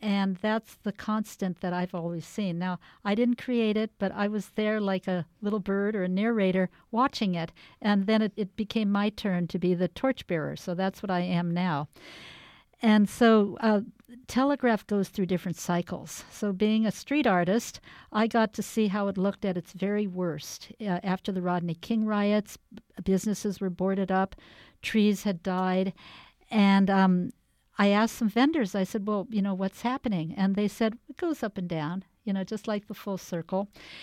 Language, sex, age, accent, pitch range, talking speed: English, female, 50-69, American, 185-220 Hz, 190 wpm